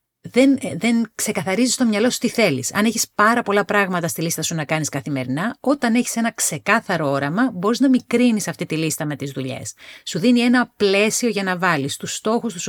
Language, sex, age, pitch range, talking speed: Greek, female, 40-59, 165-230 Hz, 205 wpm